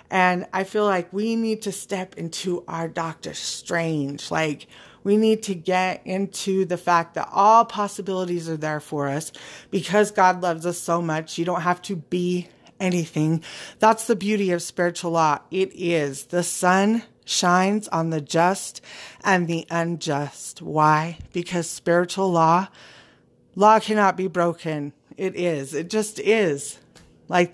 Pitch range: 165-195 Hz